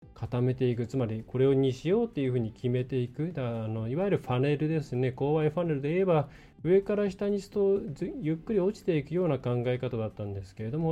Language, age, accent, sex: Japanese, 20-39, native, male